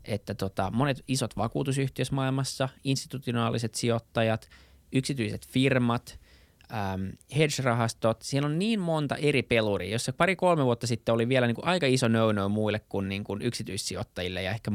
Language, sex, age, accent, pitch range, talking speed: Finnish, male, 20-39, native, 100-125 Hz, 145 wpm